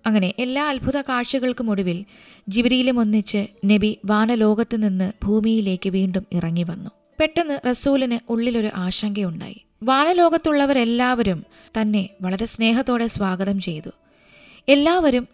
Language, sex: Malayalam, female